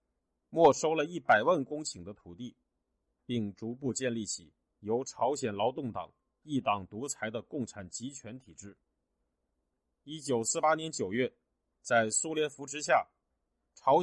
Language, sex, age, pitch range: Chinese, male, 30-49, 105-140 Hz